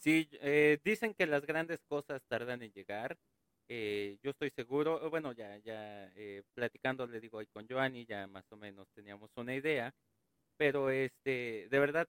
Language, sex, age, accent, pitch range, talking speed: Spanish, male, 40-59, Mexican, 115-155 Hz, 175 wpm